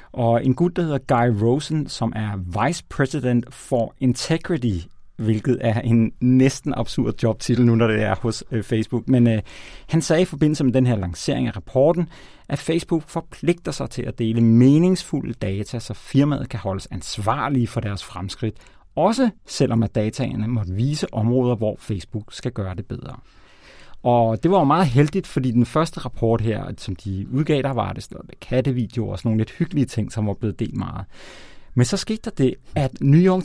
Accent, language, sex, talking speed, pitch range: native, Danish, male, 190 wpm, 115-145 Hz